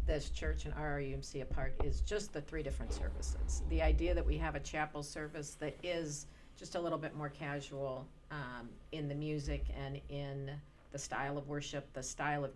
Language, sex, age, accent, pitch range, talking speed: English, female, 50-69, American, 135-150 Hz, 190 wpm